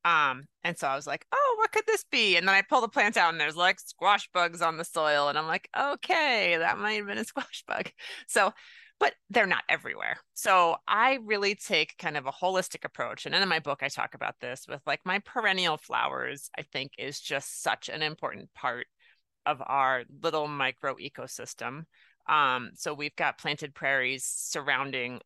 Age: 30-49